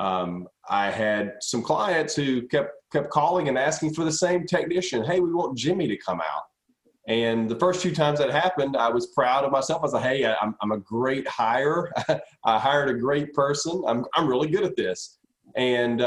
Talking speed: 200 wpm